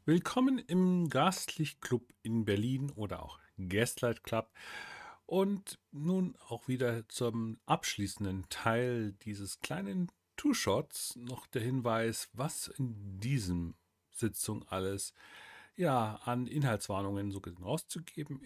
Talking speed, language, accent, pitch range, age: 105 wpm, German, German, 105-155 Hz, 40-59